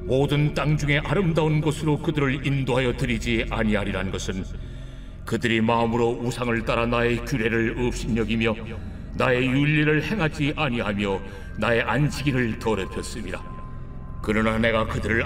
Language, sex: Korean, male